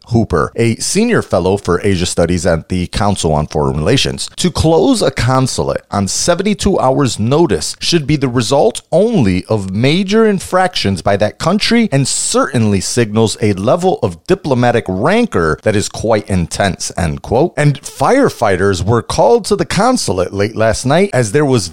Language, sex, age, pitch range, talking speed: English, male, 30-49, 100-160 Hz, 165 wpm